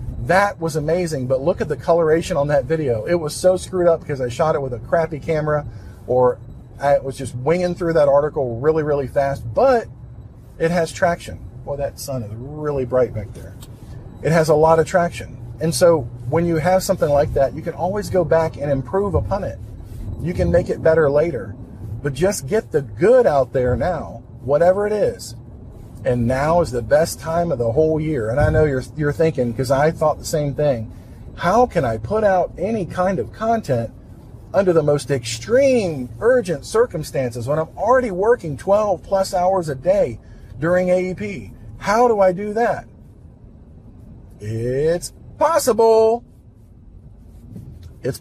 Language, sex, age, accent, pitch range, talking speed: English, male, 40-59, American, 120-170 Hz, 180 wpm